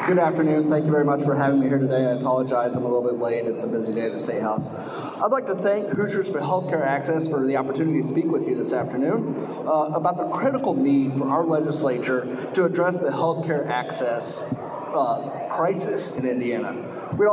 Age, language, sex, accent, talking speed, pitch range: 30-49, English, male, American, 210 wpm, 145-185 Hz